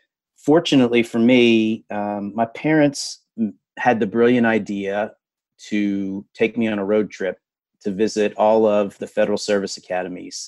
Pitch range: 100-115 Hz